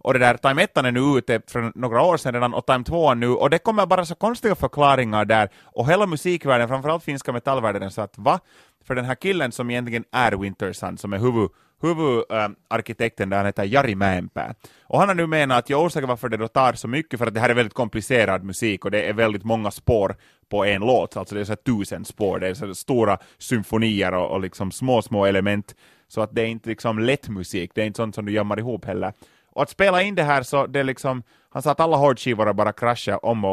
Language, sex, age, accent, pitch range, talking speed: Swedish, male, 30-49, Finnish, 105-135 Hz, 240 wpm